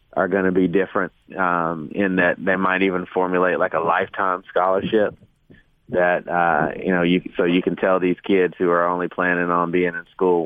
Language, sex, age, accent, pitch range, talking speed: English, male, 30-49, American, 85-95 Hz, 200 wpm